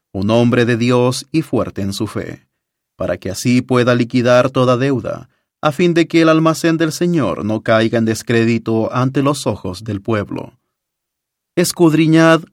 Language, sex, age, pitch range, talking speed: English, male, 30-49, 115-155 Hz, 165 wpm